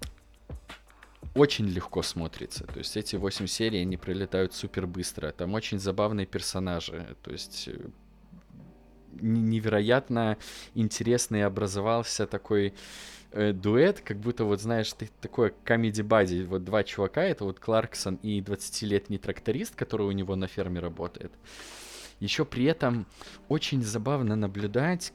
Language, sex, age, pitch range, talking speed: Russian, male, 20-39, 95-110 Hz, 120 wpm